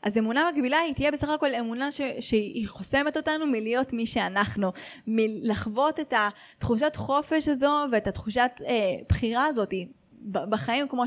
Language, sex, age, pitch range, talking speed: Hebrew, female, 20-39, 205-260 Hz, 150 wpm